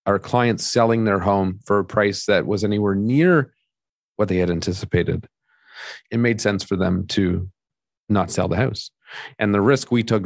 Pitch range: 95-125 Hz